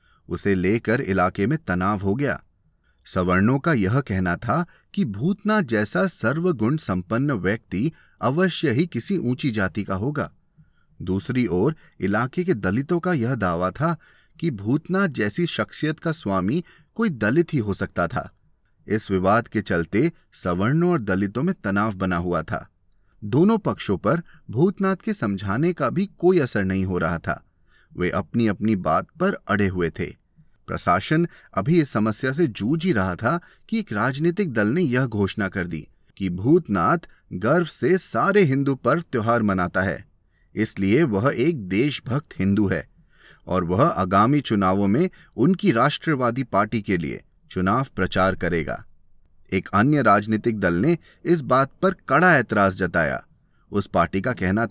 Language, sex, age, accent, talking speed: Hindi, male, 30-49, native, 155 wpm